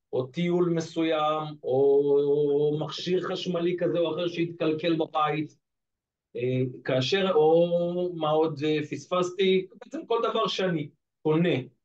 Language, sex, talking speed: Hebrew, male, 105 wpm